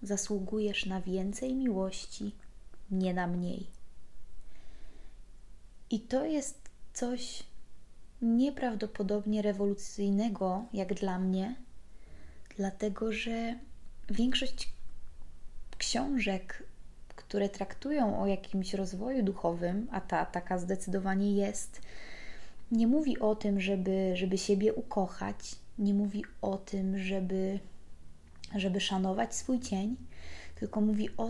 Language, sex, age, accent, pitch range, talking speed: Polish, female, 20-39, native, 195-230 Hz, 100 wpm